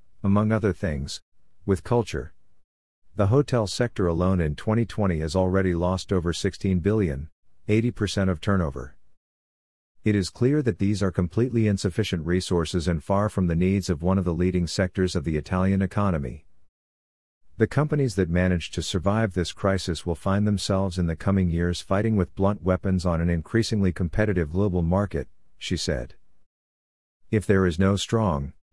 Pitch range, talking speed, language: 85-100 Hz, 160 wpm, English